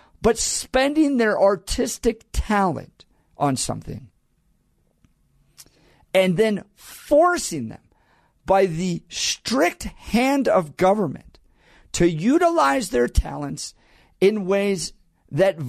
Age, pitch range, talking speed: 50-69, 150-220 Hz, 90 wpm